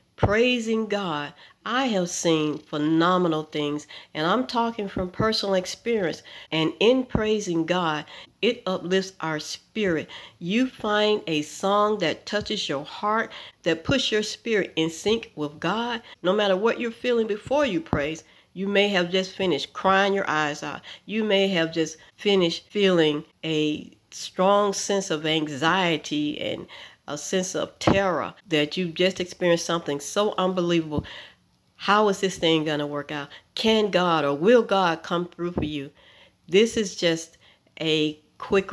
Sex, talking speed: female, 155 wpm